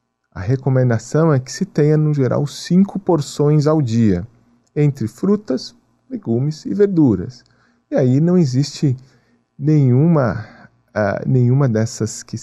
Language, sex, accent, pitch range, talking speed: Portuguese, male, Brazilian, 110-145 Hz, 120 wpm